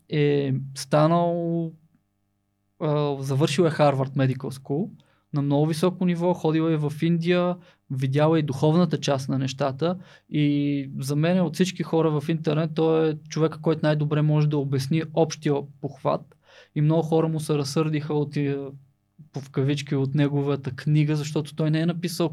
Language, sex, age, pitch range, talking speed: Bulgarian, male, 20-39, 140-160 Hz, 155 wpm